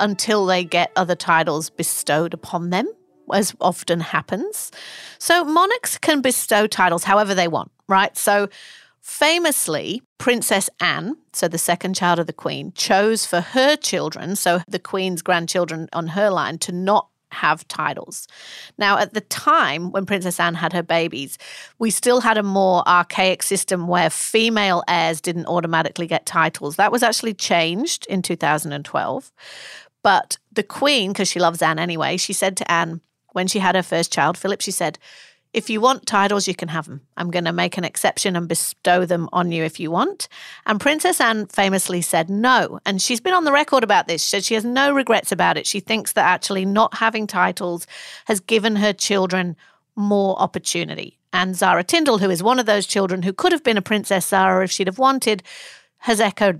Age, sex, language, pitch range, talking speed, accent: 40-59, female, English, 175-220 Hz, 185 wpm, British